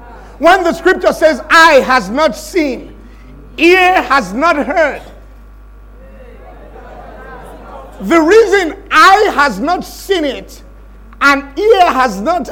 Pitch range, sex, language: 285-350 Hz, male, English